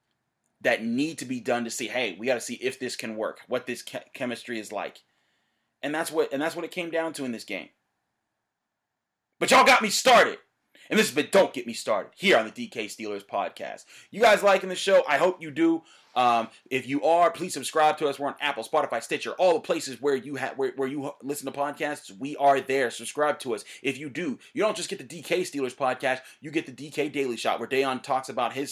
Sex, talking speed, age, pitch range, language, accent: male, 240 wpm, 30-49, 125-150 Hz, English, American